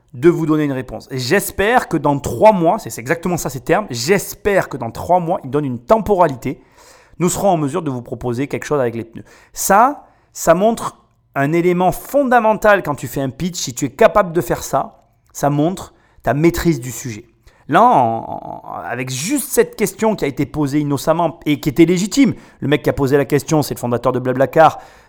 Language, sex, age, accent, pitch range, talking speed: French, male, 30-49, French, 130-180 Hz, 205 wpm